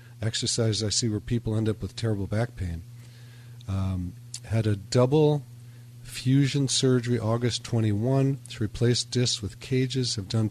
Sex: male